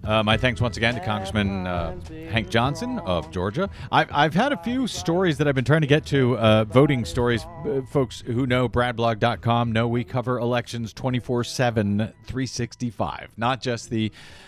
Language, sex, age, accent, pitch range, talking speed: English, male, 40-59, American, 110-155 Hz, 160 wpm